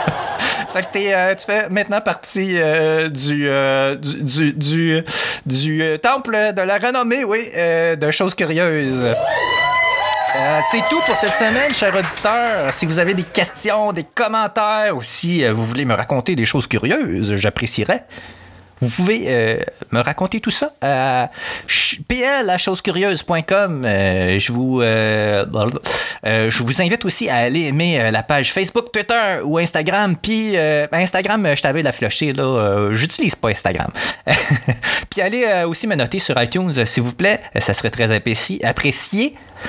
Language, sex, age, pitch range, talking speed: French, male, 30-49, 140-210 Hz, 155 wpm